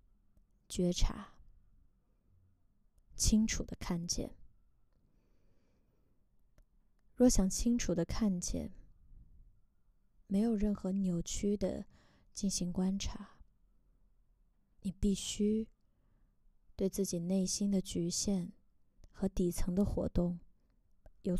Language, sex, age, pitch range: Chinese, female, 20-39, 180-210 Hz